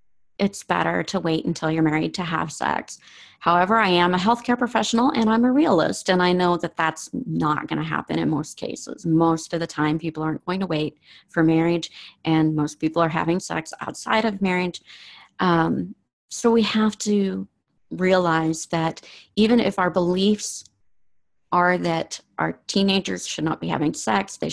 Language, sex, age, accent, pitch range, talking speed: English, female, 40-59, American, 160-200 Hz, 180 wpm